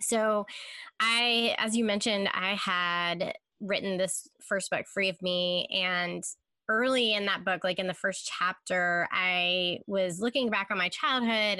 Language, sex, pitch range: English, female, 180-230 Hz